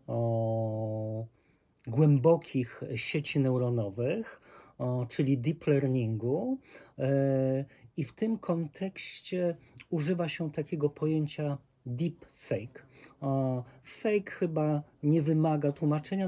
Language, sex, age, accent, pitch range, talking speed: Polish, male, 40-59, native, 130-160 Hz, 90 wpm